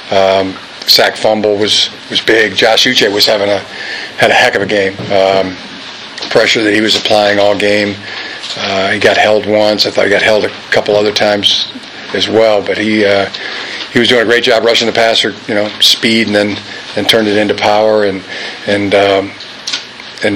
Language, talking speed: English, 200 wpm